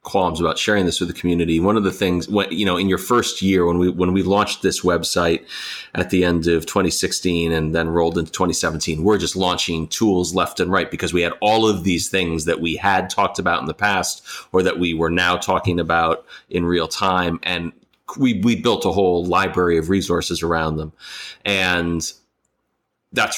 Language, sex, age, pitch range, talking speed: English, male, 30-49, 85-95 Hz, 205 wpm